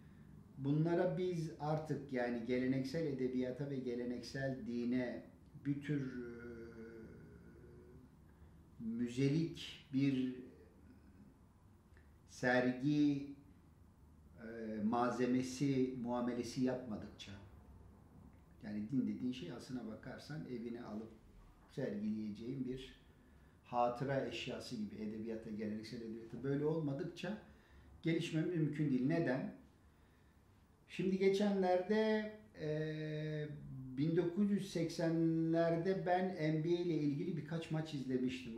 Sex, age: male, 50-69